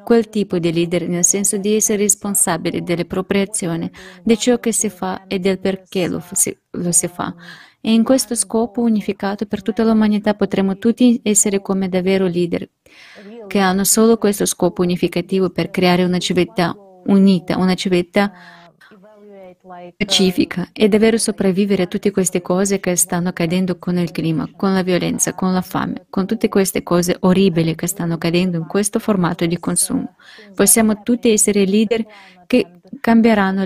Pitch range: 185-215 Hz